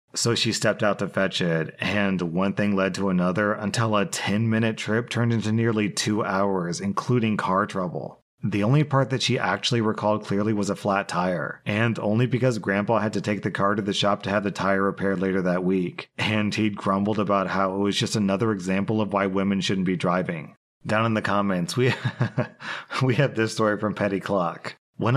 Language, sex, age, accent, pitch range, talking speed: English, male, 30-49, American, 95-110 Hz, 205 wpm